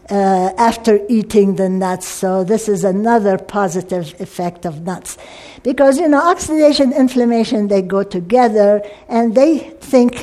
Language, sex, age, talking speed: English, female, 60-79, 140 wpm